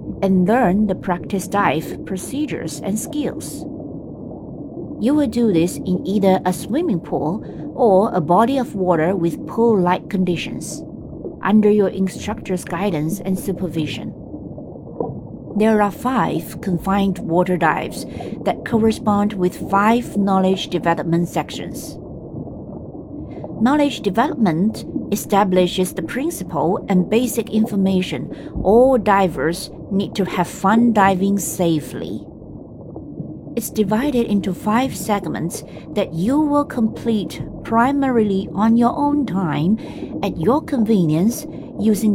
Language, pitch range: Chinese, 180-230 Hz